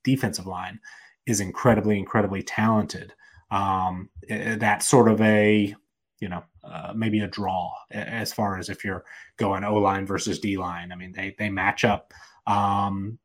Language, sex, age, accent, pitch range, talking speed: English, male, 30-49, American, 100-115 Hz, 150 wpm